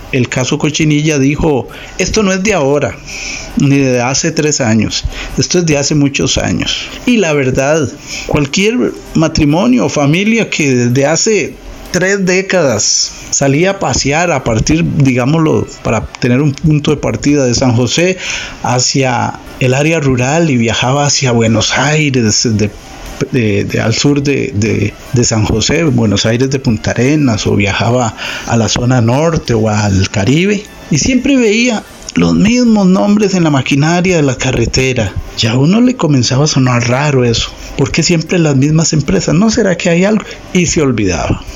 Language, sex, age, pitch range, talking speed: Spanish, male, 50-69, 125-170 Hz, 165 wpm